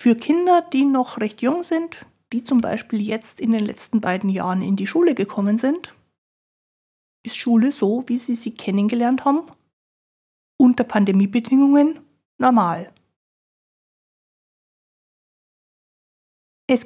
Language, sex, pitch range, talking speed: German, female, 210-270 Hz, 115 wpm